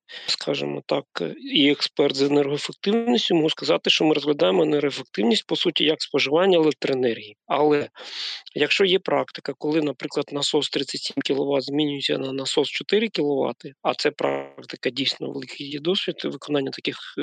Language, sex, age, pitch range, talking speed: Ukrainian, male, 40-59, 140-160 Hz, 135 wpm